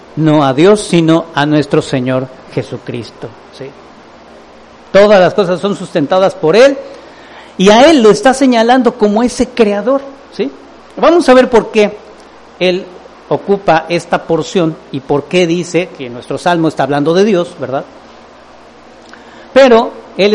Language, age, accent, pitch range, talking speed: English, 50-69, Mexican, 155-210 Hz, 140 wpm